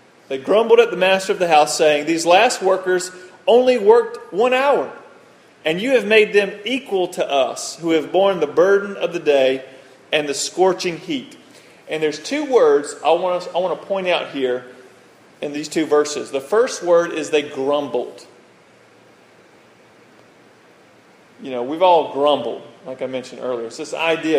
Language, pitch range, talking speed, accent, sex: English, 140-185 Hz, 170 wpm, American, male